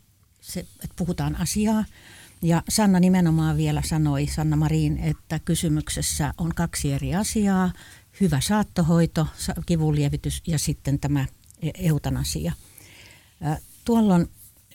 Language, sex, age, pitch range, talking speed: Finnish, female, 60-79, 145-175 Hz, 105 wpm